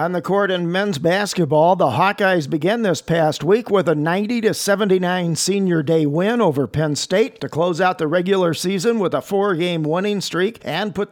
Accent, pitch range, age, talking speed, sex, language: American, 155-195 Hz, 50-69, 185 wpm, male, English